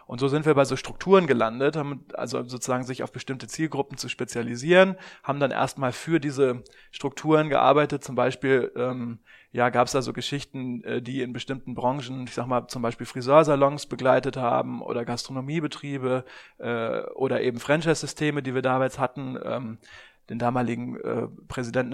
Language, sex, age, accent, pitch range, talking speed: German, male, 20-39, German, 125-145 Hz, 165 wpm